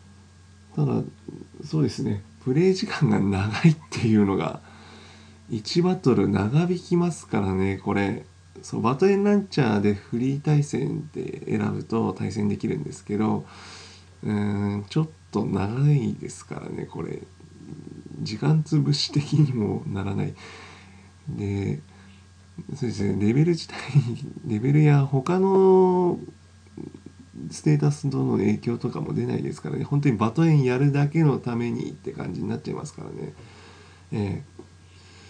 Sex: male